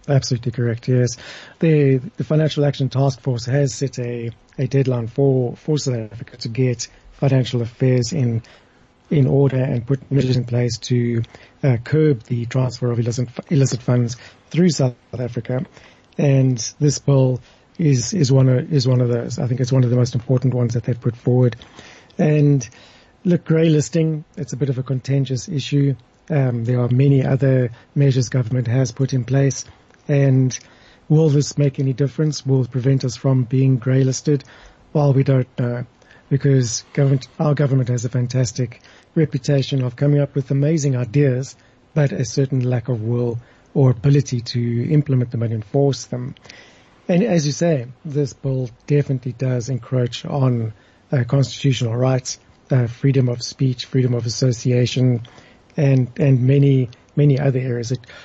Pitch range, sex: 125-140 Hz, male